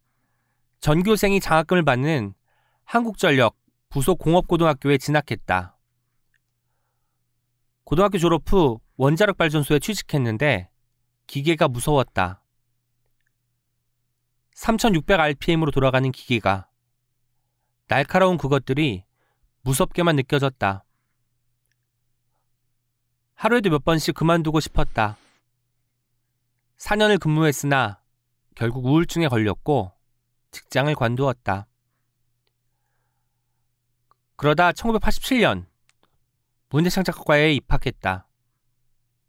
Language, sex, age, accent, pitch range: Korean, male, 40-59, native, 120-160 Hz